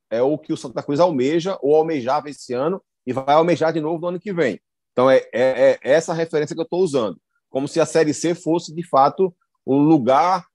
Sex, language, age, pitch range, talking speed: male, Portuguese, 30-49, 140-180 Hz, 230 wpm